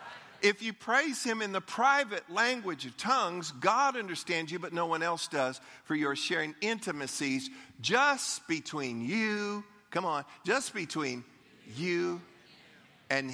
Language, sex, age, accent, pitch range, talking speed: English, male, 50-69, American, 140-180 Hz, 145 wpm